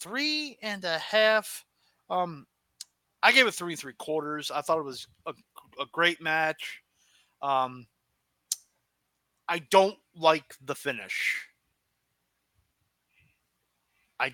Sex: male